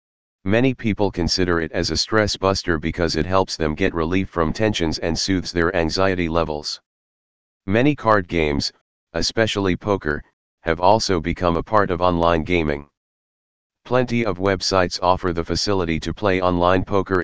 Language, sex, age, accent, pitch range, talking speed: English, male, 40-59, American, 80-100 Hz, 155 wpm